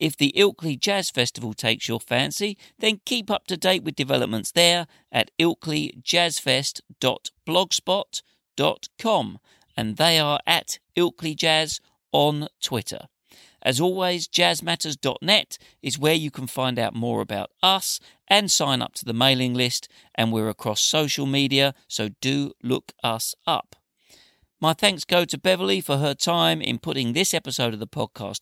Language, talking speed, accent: English, 150 wpm, British